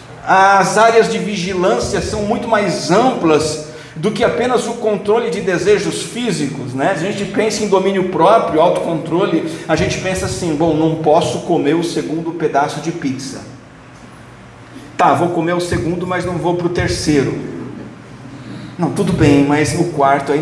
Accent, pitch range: Brazilian, 160-235 Hz